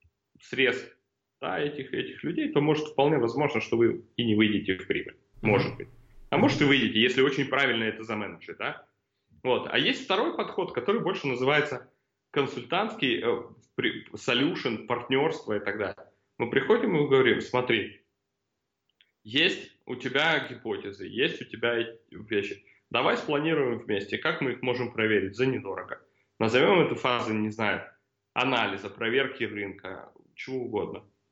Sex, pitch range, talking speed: male, 115-150 Hz, 145 wpm